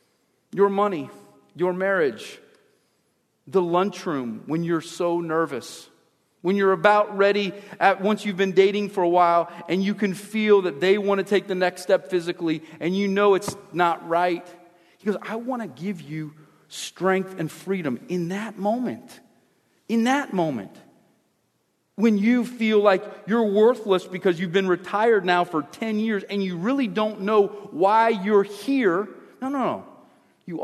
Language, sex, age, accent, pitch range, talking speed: English, male, 40-59, American, 155-210 Hz, 165 wpm